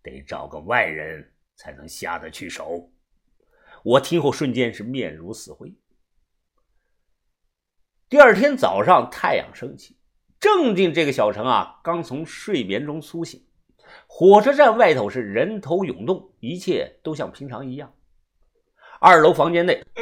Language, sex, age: Chinese, male, 50-69